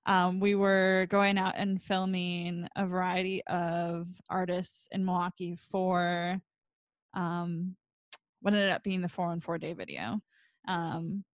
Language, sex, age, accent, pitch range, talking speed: English, female, 10-29, American, 180-210 Hz, 135 wpm